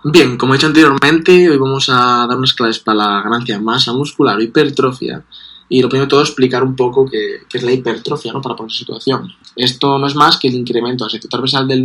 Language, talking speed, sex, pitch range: Spanish, 225 wpm, male, 115-130 Hz